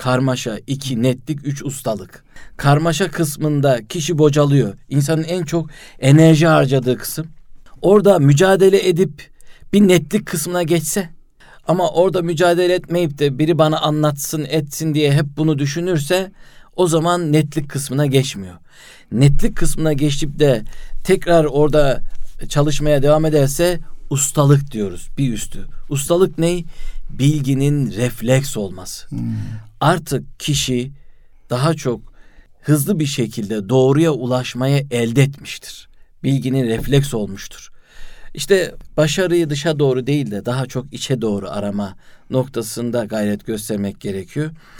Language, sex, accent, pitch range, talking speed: Turkish, male, native, 120-155 Hz, 115 wpm